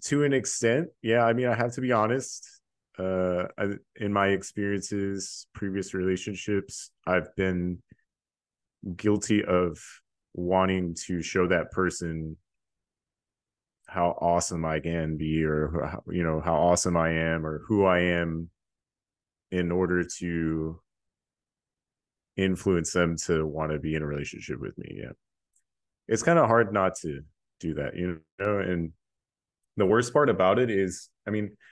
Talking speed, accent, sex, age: 150 wpm, American, male, 30-49